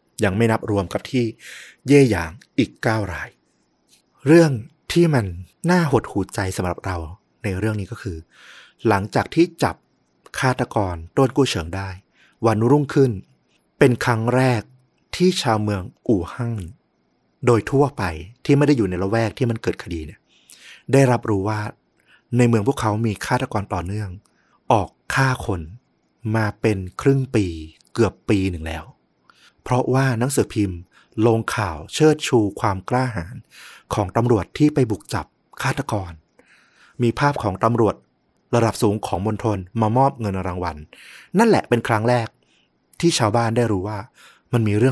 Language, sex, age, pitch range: Thai, male, 30-49, 95-125 Hz